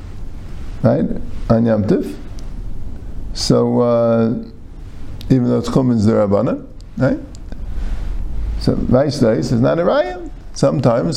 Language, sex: English, male